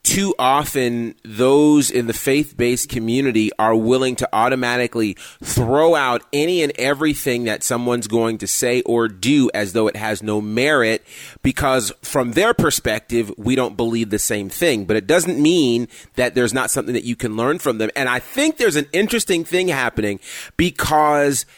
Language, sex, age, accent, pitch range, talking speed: English, male, 30-49, American, 125-185 Hz, 170 wpm